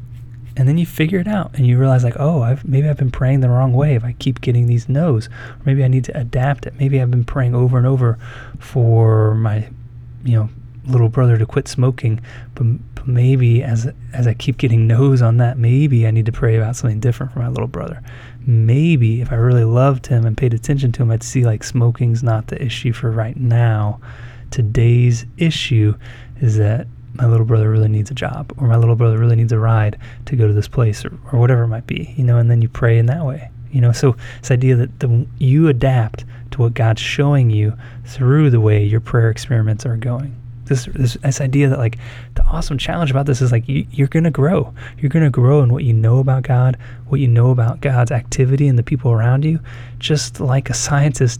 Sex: male